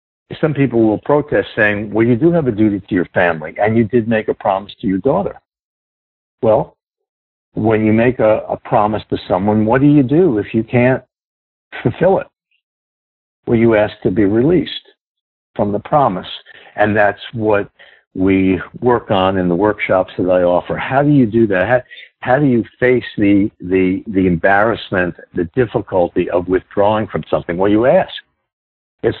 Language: English